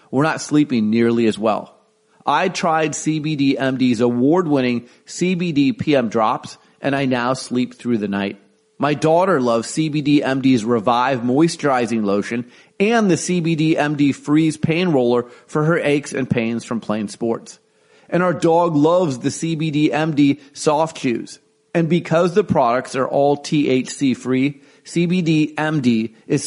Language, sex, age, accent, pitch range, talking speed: English, male, 30-49, American, 120-160 Hz, 145 wpm